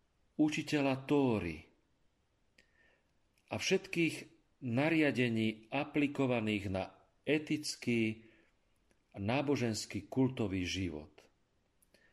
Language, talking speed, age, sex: Slovak, 60 wpm, 40-59, male